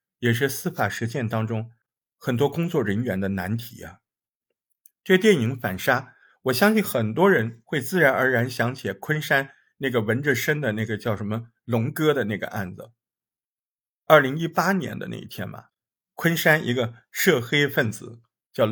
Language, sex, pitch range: Chinese, male, 115-170 Hz